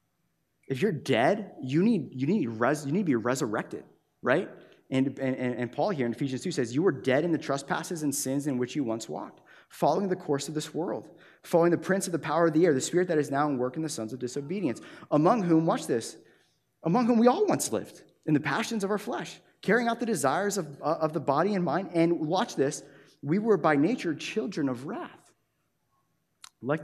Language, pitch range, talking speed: English, 130-175 Hz, 225 wpm